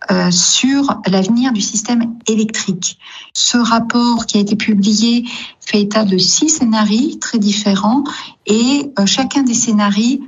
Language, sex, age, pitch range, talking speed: French, female, 50-69, 195-235 Hz, 140 wpm